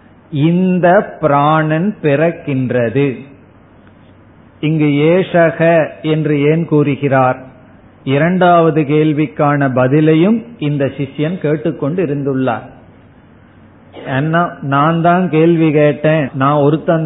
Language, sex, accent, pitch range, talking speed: Tamil, male, native, 135-160 Hz, 65 wpm